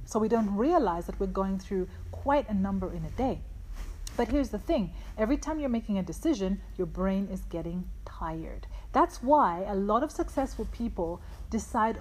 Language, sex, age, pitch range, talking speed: English, female, 30-49, 185-245 Hz, 185 wpm